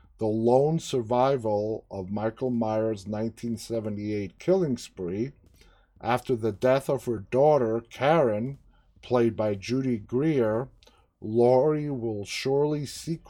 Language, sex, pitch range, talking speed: English, male, 100-130 Hz, 110 wpm